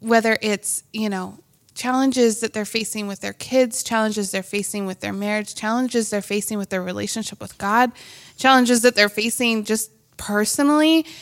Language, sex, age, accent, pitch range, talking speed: English, female, 20-39, American, 195-240 Hz, 165 wpm